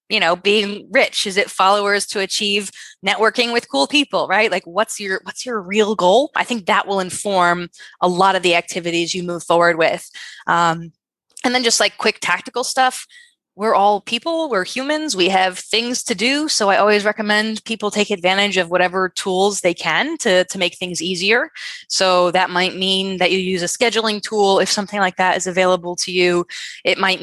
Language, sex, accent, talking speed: English, female, American, 200 wpm